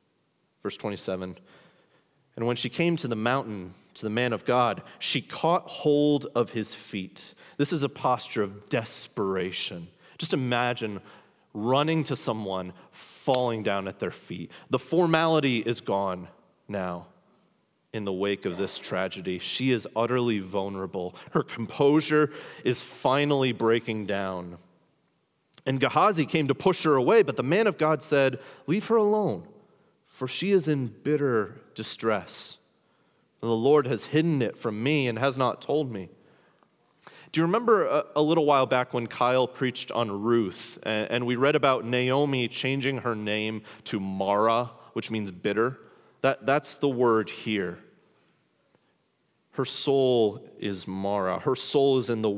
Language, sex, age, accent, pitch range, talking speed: English, male, 30-49, American, 105-145 Hz, 150 wpm